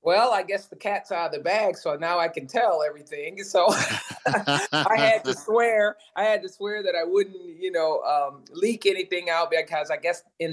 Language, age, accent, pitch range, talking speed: English, 30-49, American, 150-190 Hz, 210 wpm